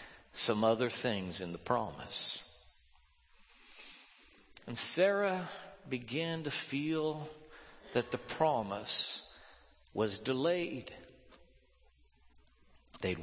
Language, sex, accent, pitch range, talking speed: English, male, American, 110-180 Hz, 75 wpm